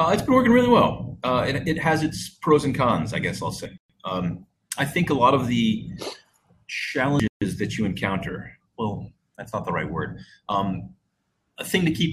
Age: 30-49